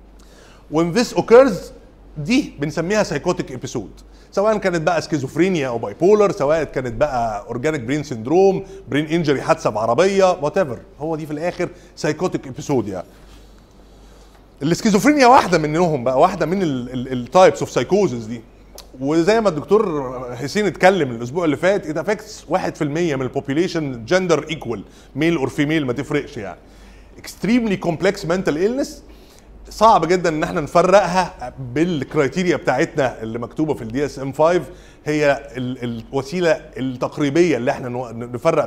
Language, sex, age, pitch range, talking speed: Arabic, male, 30-49, 130-180 Hz, 140 wpm